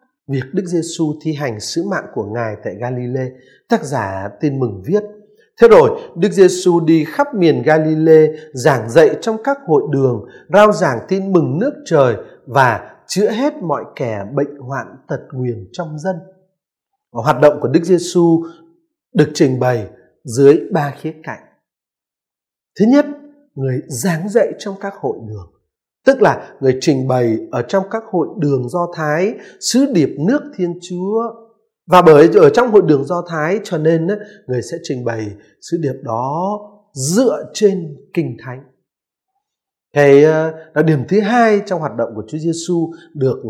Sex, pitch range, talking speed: male, 140-205 Hz, 165 wpm